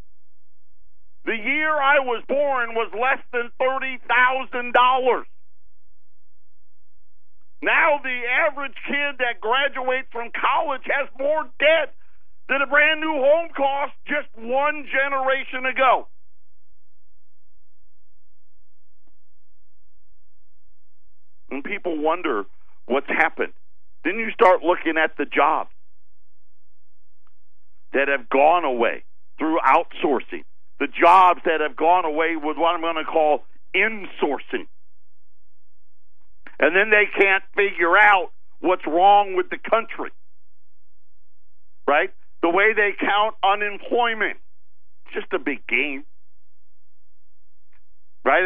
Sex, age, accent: male, 50-69, American